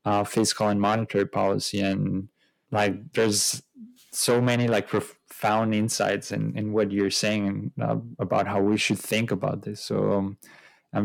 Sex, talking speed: male, 155 wpm